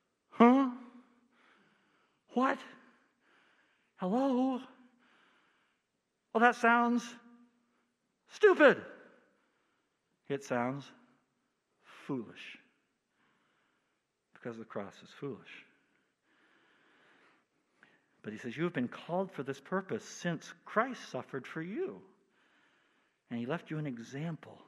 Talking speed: 90 wpm